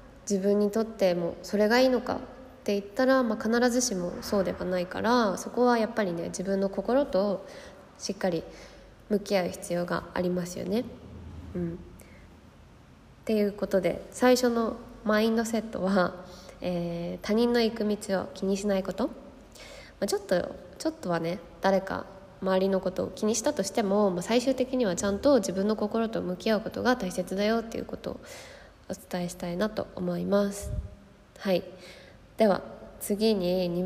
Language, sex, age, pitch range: Japanese, female, 20-39, 185-225 Hz